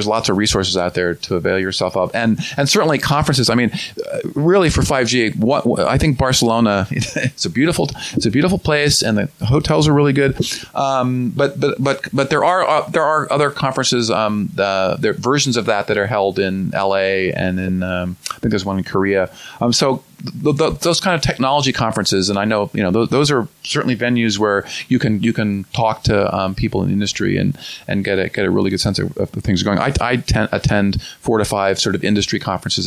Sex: male